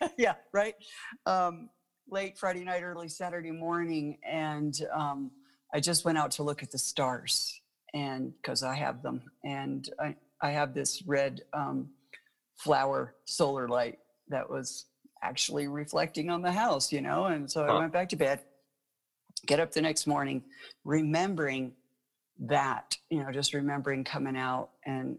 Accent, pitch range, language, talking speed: American, 130-155 Hz, English, 155 wpm